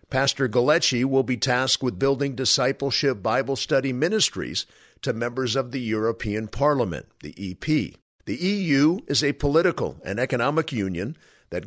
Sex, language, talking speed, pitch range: male, English, 145 wpm, 115-150 Hz